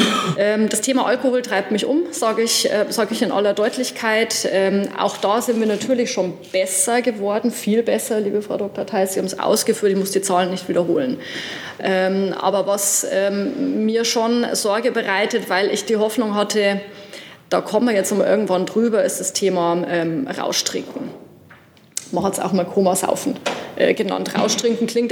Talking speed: 180 wpm